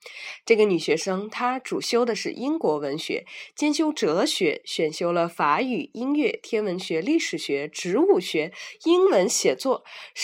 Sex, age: female, 20-39